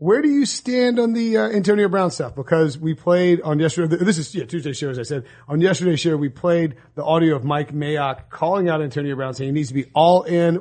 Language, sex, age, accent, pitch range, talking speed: English, male, 40-59, American, 140-175 Hz, 250 wpm